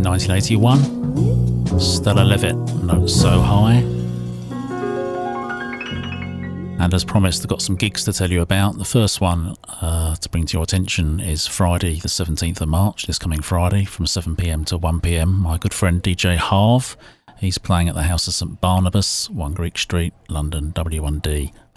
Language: English